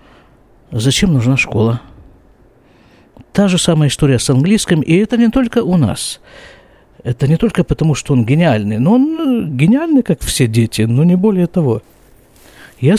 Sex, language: male, Russian